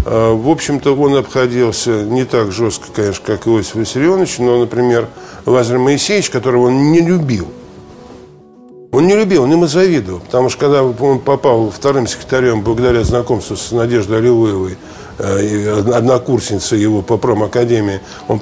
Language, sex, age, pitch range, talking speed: Russian, male, 50-69, 115-150 Hz, 135 wpm